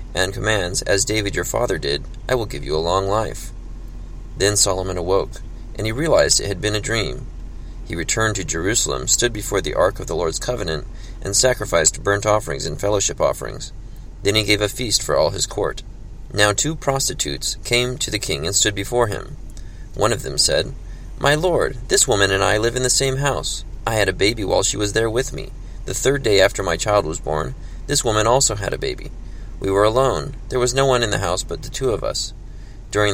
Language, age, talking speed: English, 30-49, 215 wpm